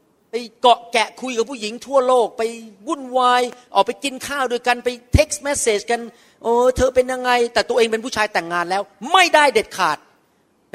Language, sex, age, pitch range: Thai, male, 40-59, 170-245 Hz